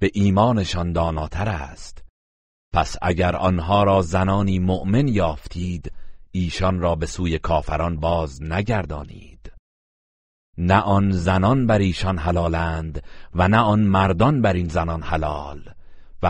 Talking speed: 120 wpm